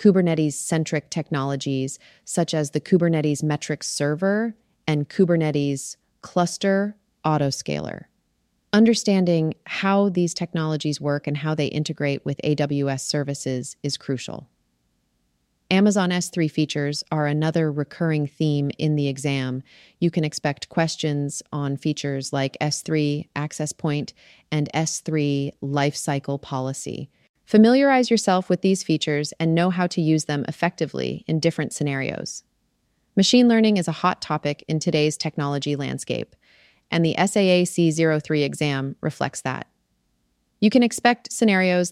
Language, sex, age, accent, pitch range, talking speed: English, female, 30-49, American, 140-170 Hz, 120 wpm